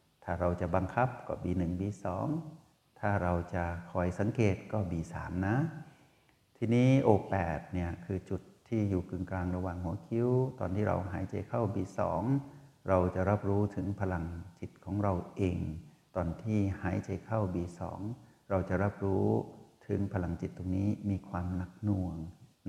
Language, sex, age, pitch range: Thai, male, 60-79, 90-110 Hz